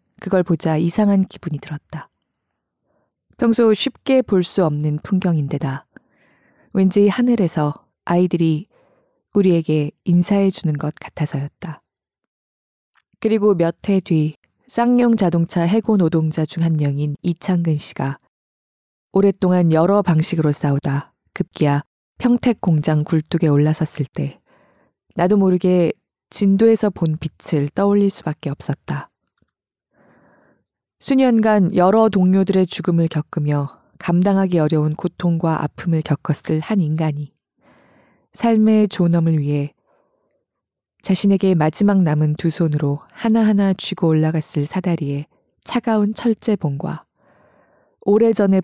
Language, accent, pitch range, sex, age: Korean, native, 155-200 Hz, female, 20-39